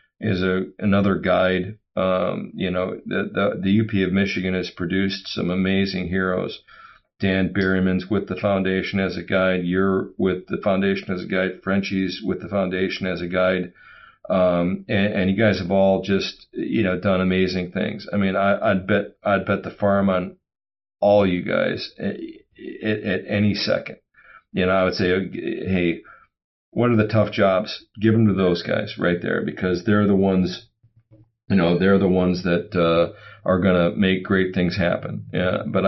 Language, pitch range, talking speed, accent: English, 90-100 Hz, 180 wpm, American